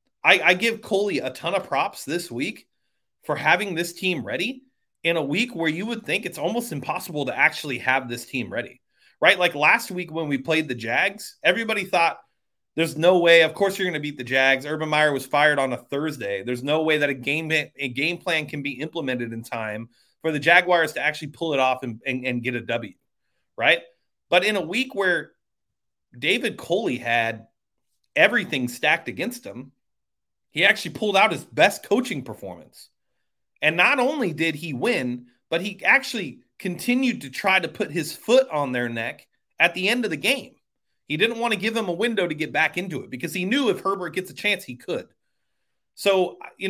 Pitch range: 130-195 Hz